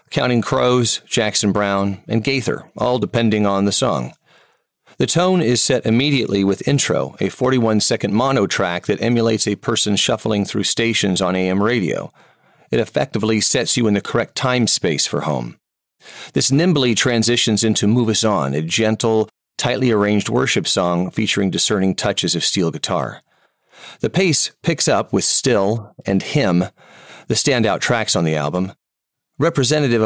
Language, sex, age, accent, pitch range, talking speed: English, male, 40-59, American, 100-125 Hz, 155 wpm